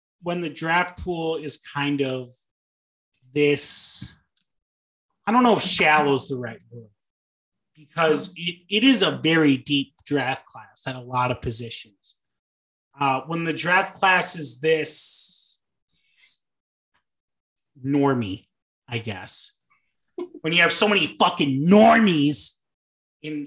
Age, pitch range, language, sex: 30-49, 125-155 Hz, English, male